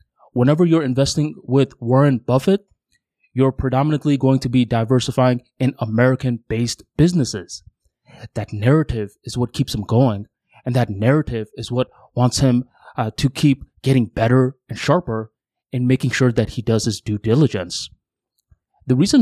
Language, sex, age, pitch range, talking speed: English, male, 20-39, 115-140 Hz, 145 wpm